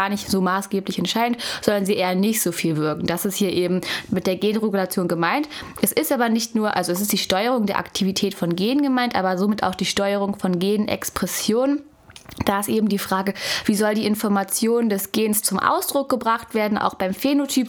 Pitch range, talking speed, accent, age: 195-235 Hz, 205 wpm, German, 10-29